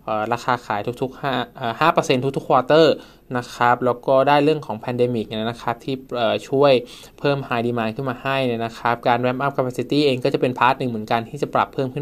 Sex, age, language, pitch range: male, 20-39, Thai, 115-135 Hz